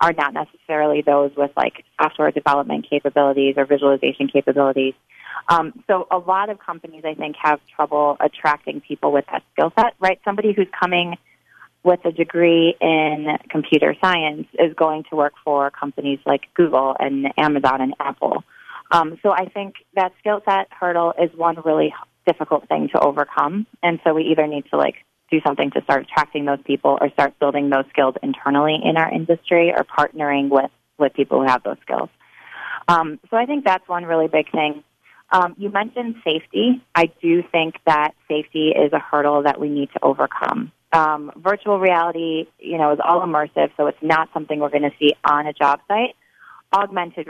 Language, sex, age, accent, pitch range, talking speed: English, female, 20-39, American, 145-170 Hz, 185 wpm